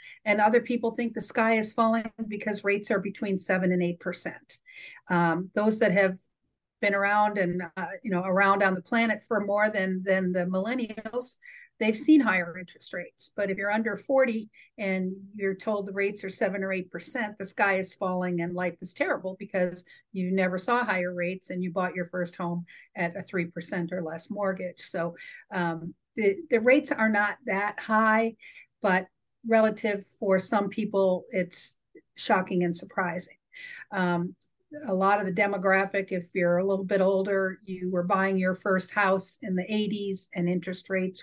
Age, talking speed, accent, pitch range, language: 50-69, 180 wpm, American, 185-220 Hz, English